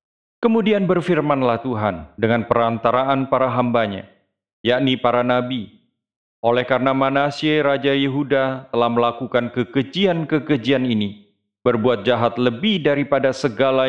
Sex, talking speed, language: male, 105 wpm, Indonesian